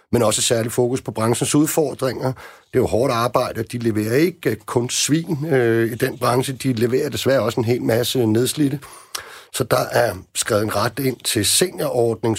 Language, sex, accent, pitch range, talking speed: Danish, male, native, 100-125 Hz, 185 wpm